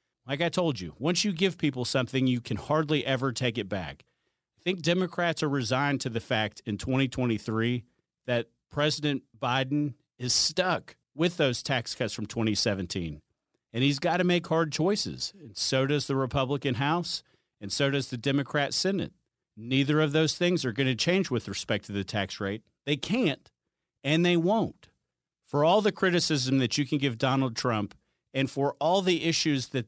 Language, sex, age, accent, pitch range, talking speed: English, male, 40-59, American, 120-155 Hz, 185 wpm